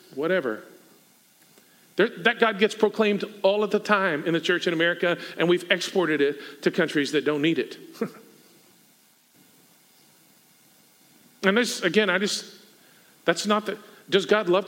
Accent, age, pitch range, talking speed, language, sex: American, 50-69, 175-210 Hz, 145 wpm, English, male